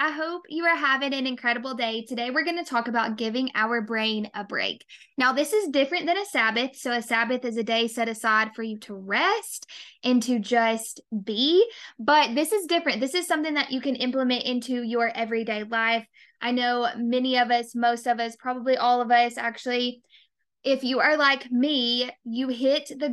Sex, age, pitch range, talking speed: female, 10-29, 235-280 Hz, 200 wpm